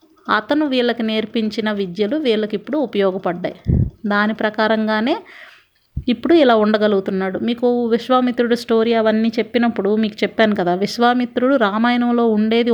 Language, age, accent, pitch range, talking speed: Telugu, 30-49, native, 210-245 Hz, 110 wpm